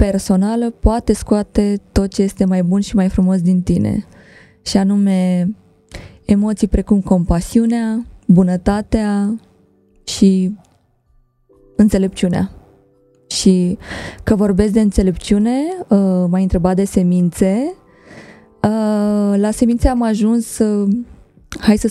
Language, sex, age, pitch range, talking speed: Romanian, female, 20-39, 180-225 Hz, 100 wpm